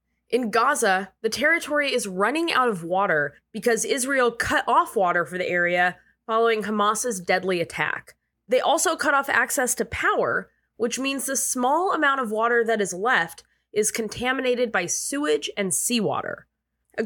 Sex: female